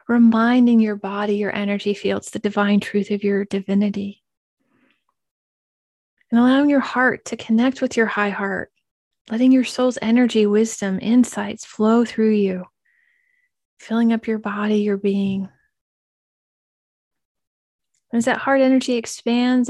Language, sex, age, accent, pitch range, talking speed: English, female, 30-49, American, 205-250 Hz, 130 wpm